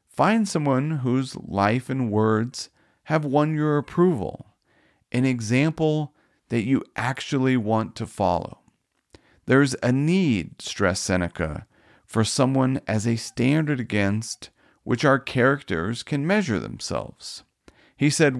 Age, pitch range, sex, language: 40-59, 110-140 Hz, male, English